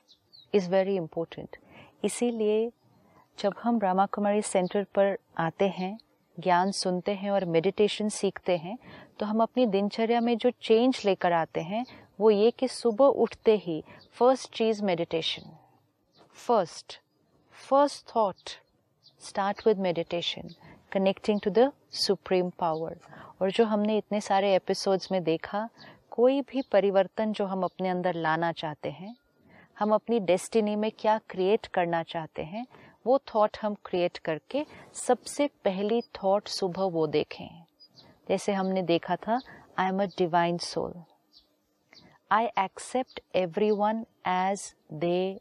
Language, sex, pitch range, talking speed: Hindi, female, 180-220 Hz, 135 wpm